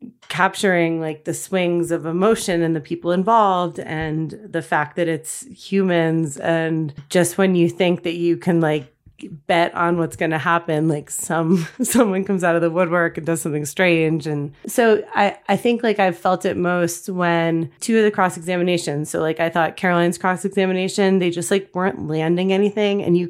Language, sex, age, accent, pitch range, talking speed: English, female, 30-49, American, 165-190 Hz, 190 wpm